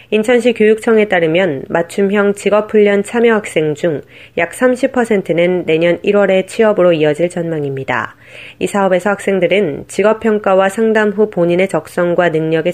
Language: Korean